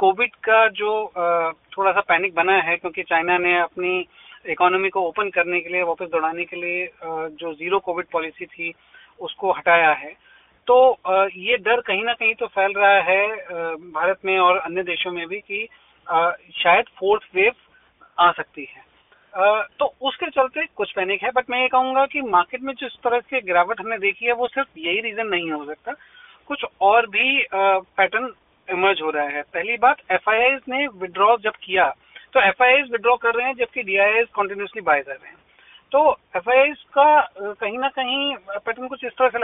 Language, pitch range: Hindi, 185-250 Hz